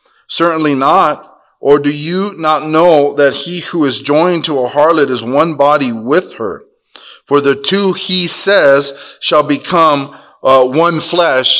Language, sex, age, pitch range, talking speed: English, male, 30-49, 145-175 Hz, 155 wpm